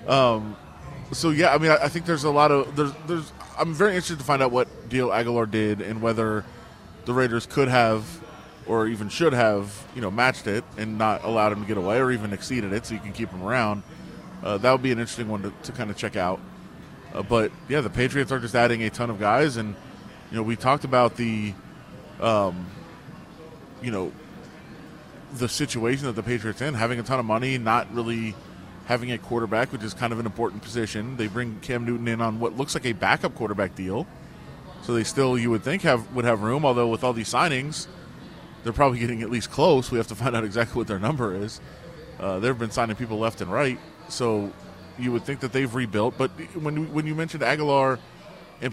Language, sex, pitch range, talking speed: English, male, 110-135 Hz, 220 wpm